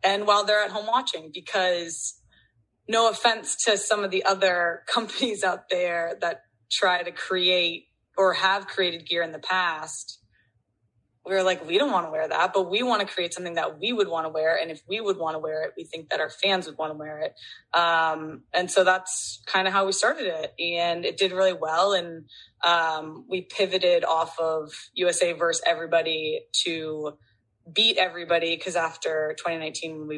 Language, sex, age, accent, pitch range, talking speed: English, female, 20-39, American, 155-185 Hz, 185 wpm